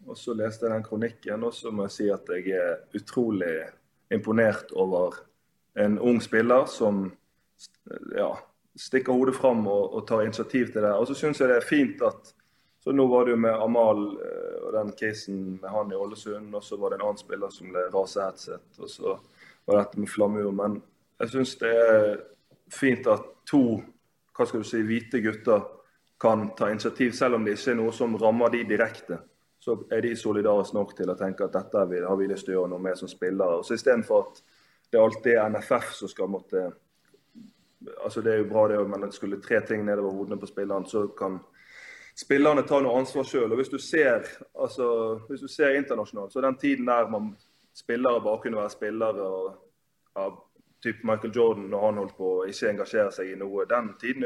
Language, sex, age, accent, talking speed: English, male, 20-39, Swedish, 205 wpm